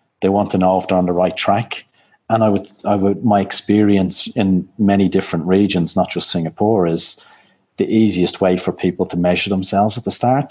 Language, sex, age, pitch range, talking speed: English, male, 30-49, 90-100 Hz, 205 wpm